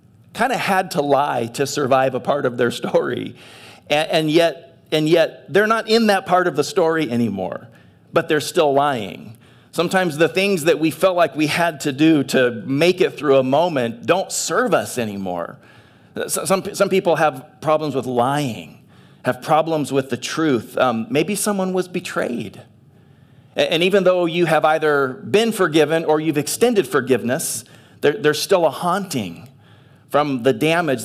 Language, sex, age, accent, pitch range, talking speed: English, male, 40-59, American, 130-185 Hz, 170 wpm